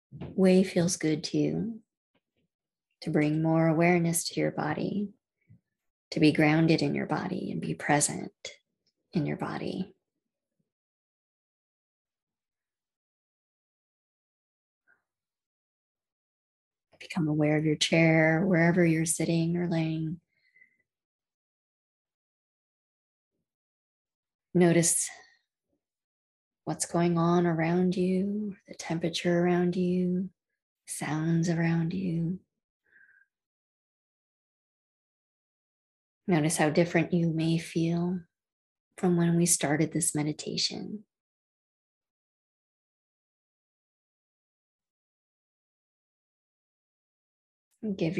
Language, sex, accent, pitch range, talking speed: English, female, American, 160-180 Hz, 75 wpm